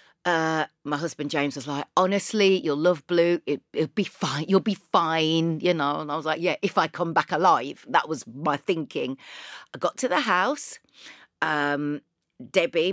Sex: female